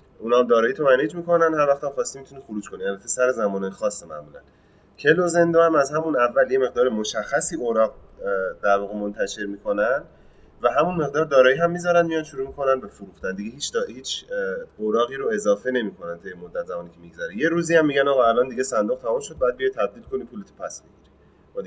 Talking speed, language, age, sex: 195 wpm, Persian, 30-49, male